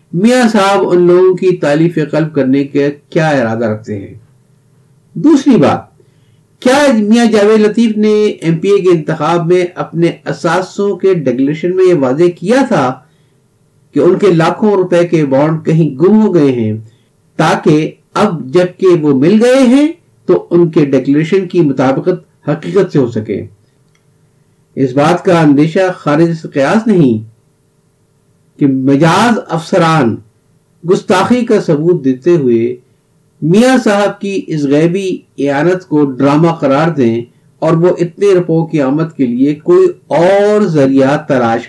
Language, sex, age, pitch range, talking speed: Urdu, male, 50-69, 140-195 Hz, 150 wpm